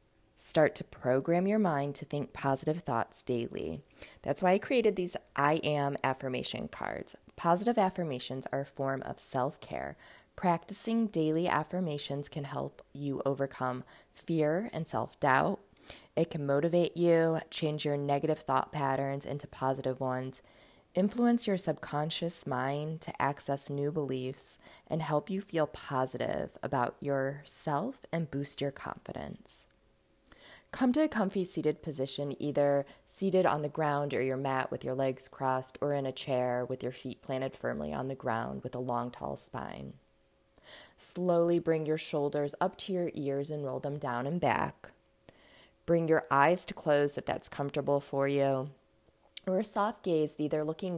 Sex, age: female, 20-39